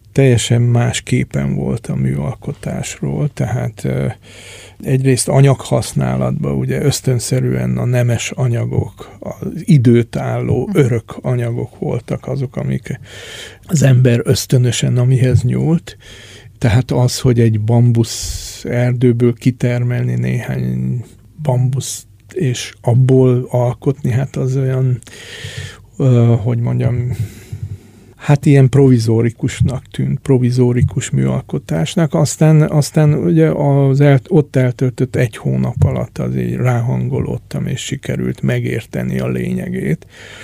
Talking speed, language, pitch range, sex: 100 wpm, Hungarian, 105-130 Hz, male